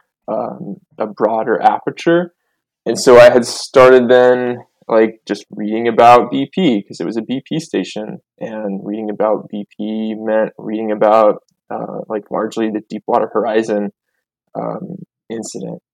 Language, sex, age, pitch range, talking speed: English, male, 20-39, 110-130 Hz, 135 wpm